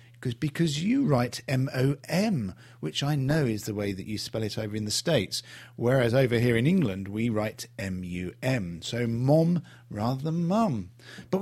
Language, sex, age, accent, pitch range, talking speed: English, male, 40-59, British, 115-155 Hz, 175 wpm